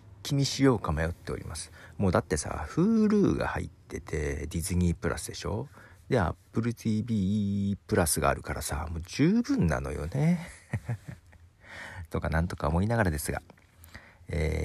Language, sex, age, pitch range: Japanese, male, 40-59, 80-110 Hz